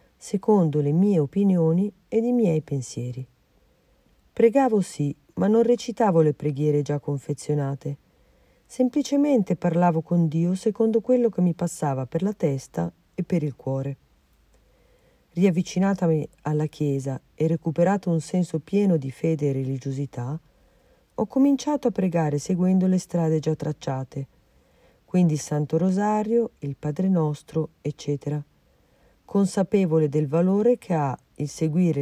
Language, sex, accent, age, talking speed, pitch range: Italian, female, native, 40-59, 130 wpm, 145-195 Hz